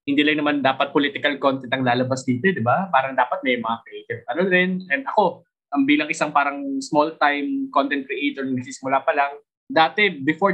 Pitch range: 130-175 Hz